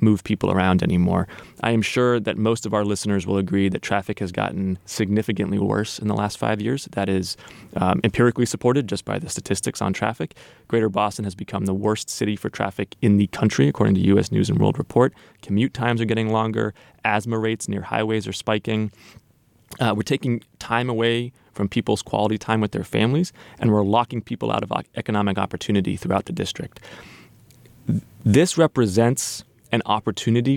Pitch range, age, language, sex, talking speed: 100-115 Hz, 20-39, English, male, 180 wpm